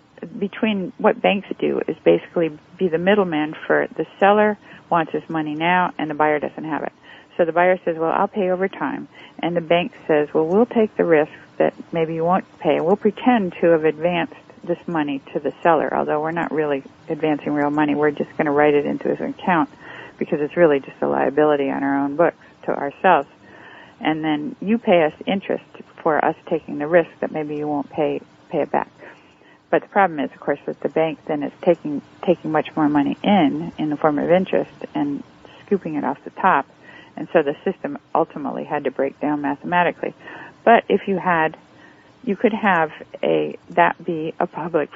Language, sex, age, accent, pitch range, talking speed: English, female, 50-69, American, 150-190 Hz, 205 wpm